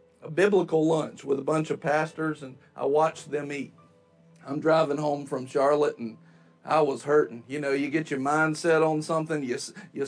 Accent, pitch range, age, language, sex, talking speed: American, 145-175 Hz, 50-69, English, male, 185 wpm